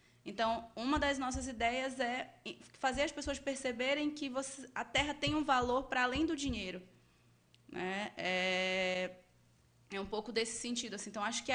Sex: female